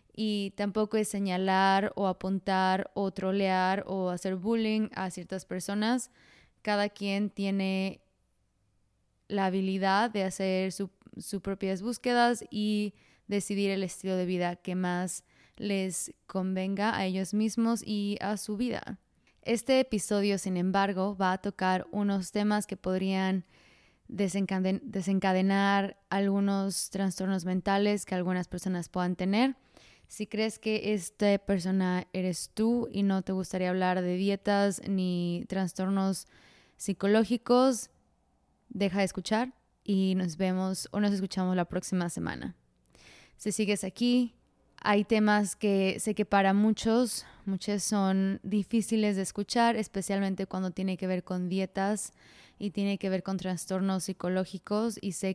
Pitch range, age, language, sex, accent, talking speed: 185-210 Hz, 20-39, English, female, Mexican, 135 wpm